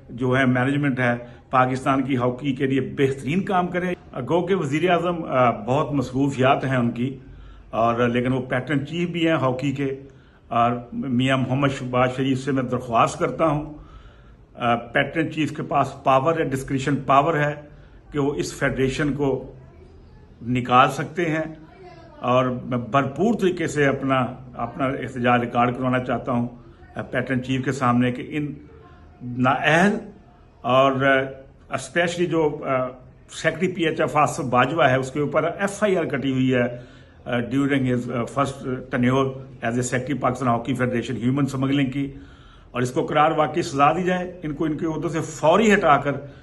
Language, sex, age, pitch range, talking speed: Urdu, male, 60-79, 125-155 Hz, 160 wpm